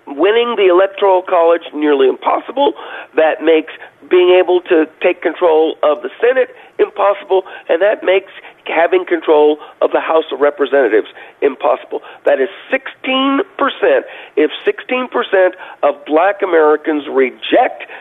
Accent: American